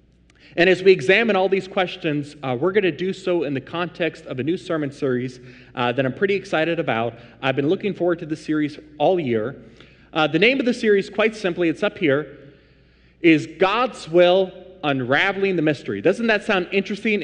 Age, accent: 30-49, American